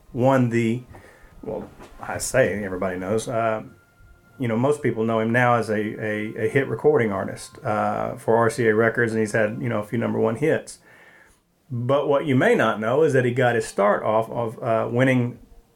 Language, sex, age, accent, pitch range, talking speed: English, male, 40-59, American, 110-135 Hz, 200 wpm